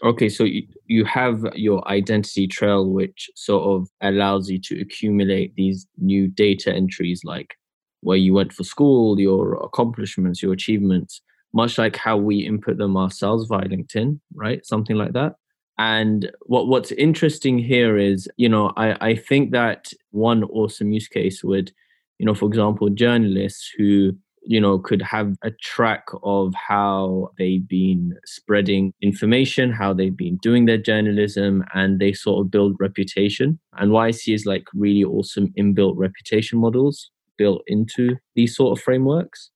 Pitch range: 95-110 Hz